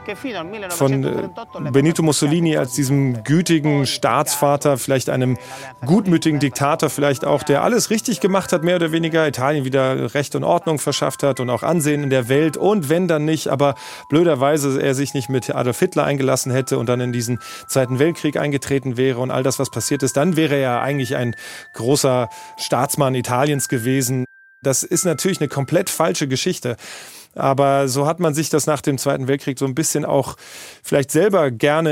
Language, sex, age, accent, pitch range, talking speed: German, male, 30-49, German, 125-150 Hz, 180 wpm